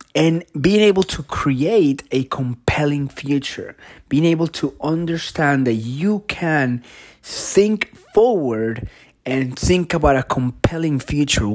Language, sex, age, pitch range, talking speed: English, male, 30-49, 130-170 Hz, 120 wpm